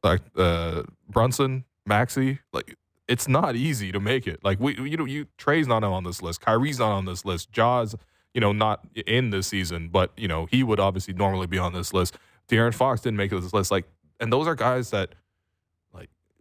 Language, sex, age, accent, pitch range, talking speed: English, male, 10-29, American, 90-115 Hz, 210 wpm